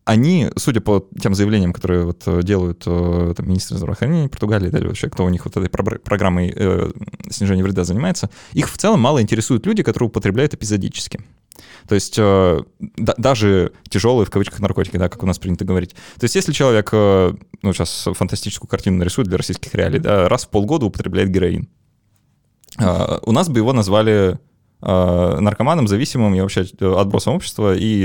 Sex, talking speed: male, 170 wpm